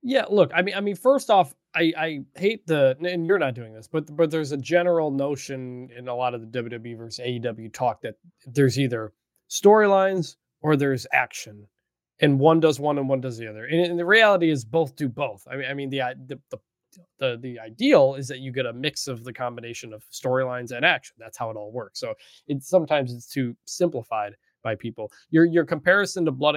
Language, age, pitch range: English, 20-39, 120-160 Hz